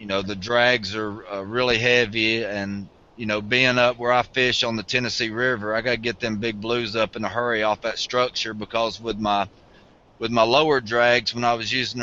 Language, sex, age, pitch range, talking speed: English, male, 20-39, 105-125 Hz, 225 wpm